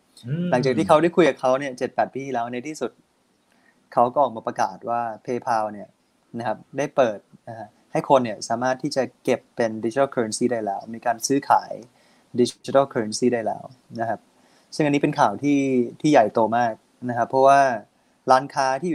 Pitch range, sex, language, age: 115-140 Hz, male, Thai, 20-39